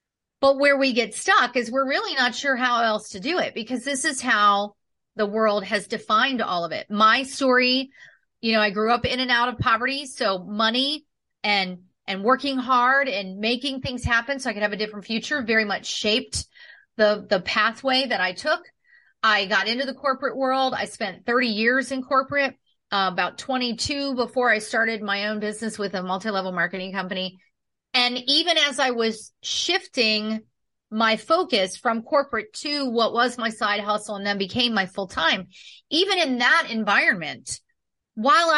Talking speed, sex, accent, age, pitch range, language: 180 wpm, female, American, 30-49, 210-270 Hz, English